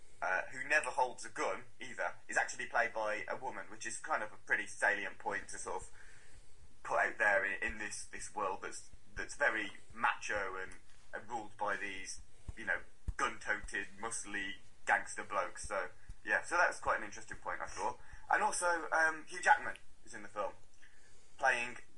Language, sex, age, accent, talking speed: English, male, 20-39, British, 185 wpm